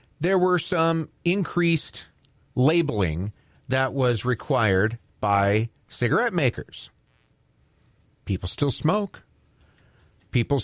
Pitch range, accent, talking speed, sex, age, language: 110-160 Hz, American, 85 wpm, male, 40-59, English